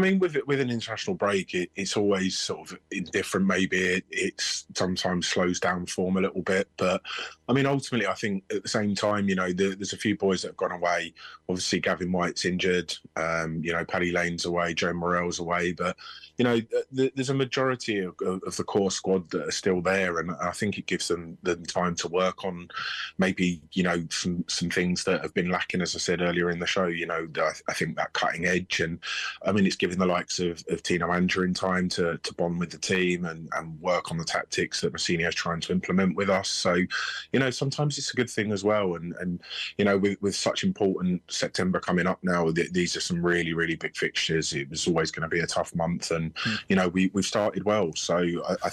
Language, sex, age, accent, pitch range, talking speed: English, male, 20-39, British, 85-100 Hz, 235 wpm